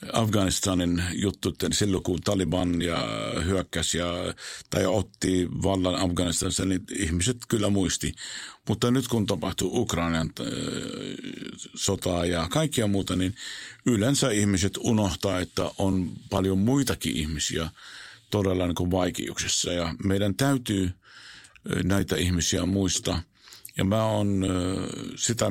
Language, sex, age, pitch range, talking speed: Finnish, male, 50-69, 90-110 Hz, 110 wpm